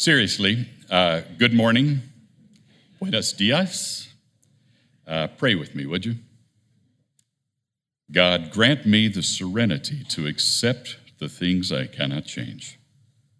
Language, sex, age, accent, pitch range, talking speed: English, male, 60-79, American, 95-130 Hz, 105 wpm